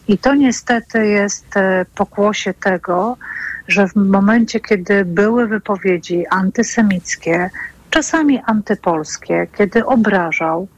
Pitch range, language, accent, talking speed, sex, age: 190-225 Hz, Polish, native, 95 wpm, female, 40-59